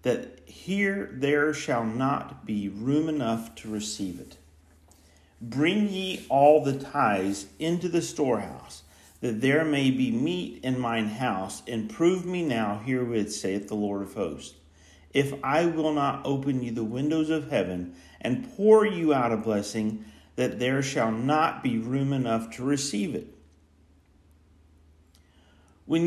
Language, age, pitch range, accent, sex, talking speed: English, 50-69, 100-150 Hz, American, male, 145 wpm